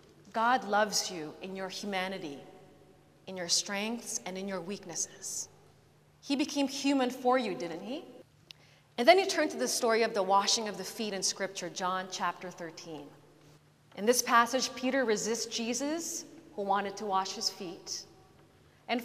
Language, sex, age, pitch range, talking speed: English, female, 30-49, 185-245 Hz, 160 wpm